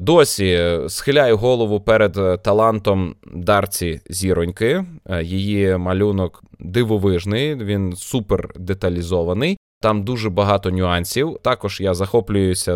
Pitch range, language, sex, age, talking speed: 95-125 Hz, Ukrainian, male, 20-39, 95 wpm